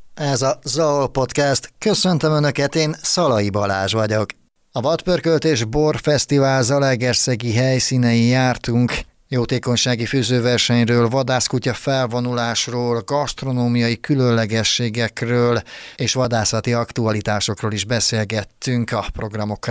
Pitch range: 110-130 Hz